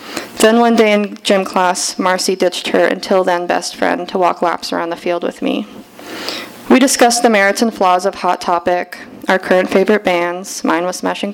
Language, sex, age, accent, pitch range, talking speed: English, female, 20-39, American, 180-210 Hz, 195 wpm